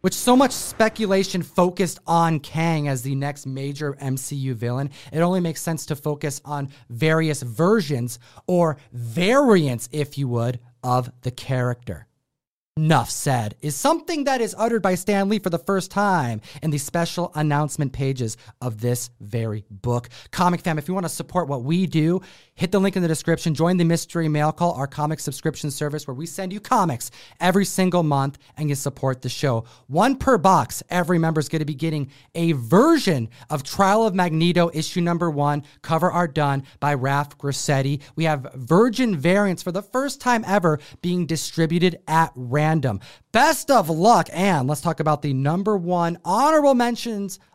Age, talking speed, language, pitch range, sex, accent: 30-49, 180 wpm, English, 140-185 Hz, male, American